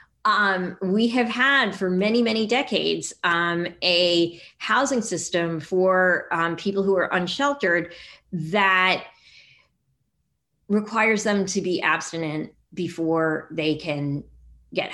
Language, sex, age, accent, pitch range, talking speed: English, female, 30-49, American, 165-195 Hz, 110 wpm